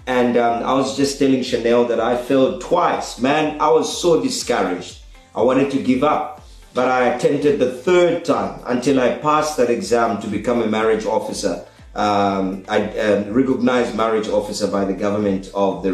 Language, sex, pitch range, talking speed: English, male, 110-145 Hz, 180 wpm